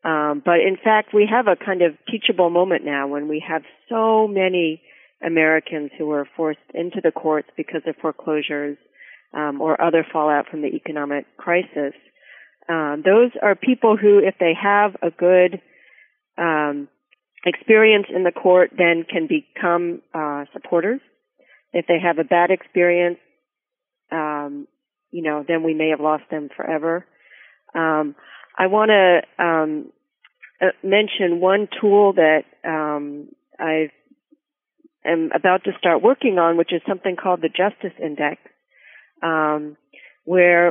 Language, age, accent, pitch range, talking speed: English, 40-59, American, 160-205 Hz, 140 wpm